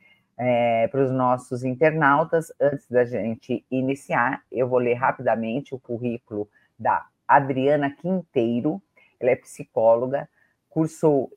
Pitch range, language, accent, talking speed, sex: 125-155 Hz, Portuguese, Brazilian, 110 wpm, female